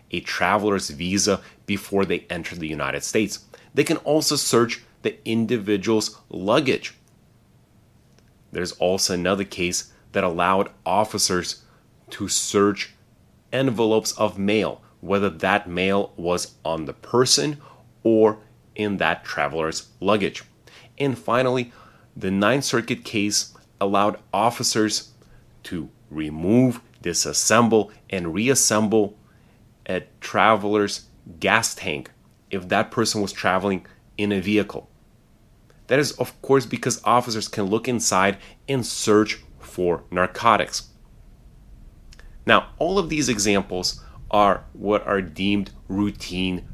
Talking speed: 110 wpm